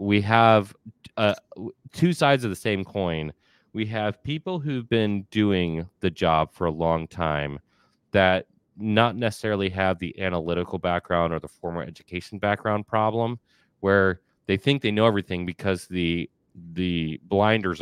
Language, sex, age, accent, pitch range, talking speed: English, male, 30-49, American, 85-110 Hz, 150 wpm